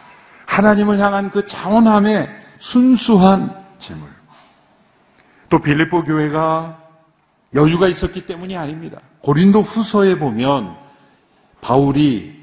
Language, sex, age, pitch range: Korean, male, 50-69, 130-180 Hz